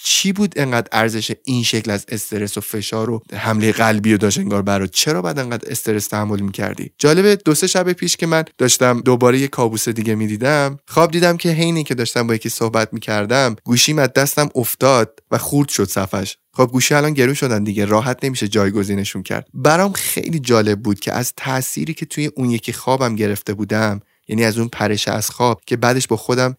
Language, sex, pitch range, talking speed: Persian, male, 105-130 Hz, 200 wpm